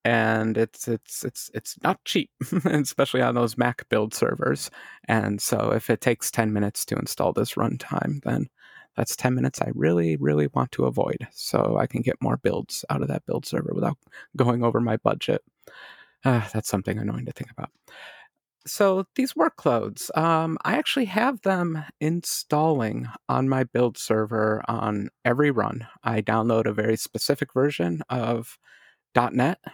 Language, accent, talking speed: English, American, 165 wpm